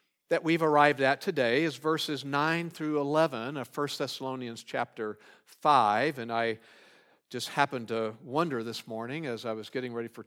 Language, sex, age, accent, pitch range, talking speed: English, male, 50-69, American, 125-180 Hz, 170 wpm